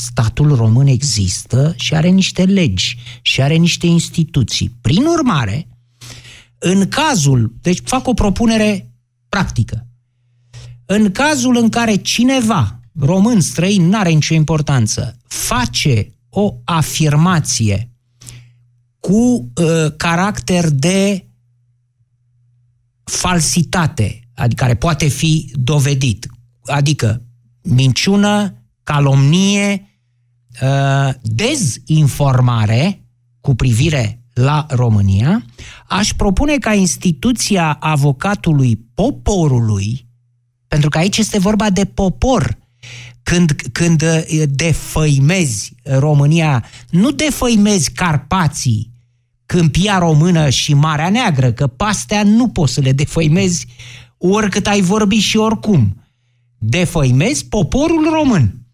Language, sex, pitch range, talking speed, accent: Romanian, male, 120-180 Hz, 95 wpm, native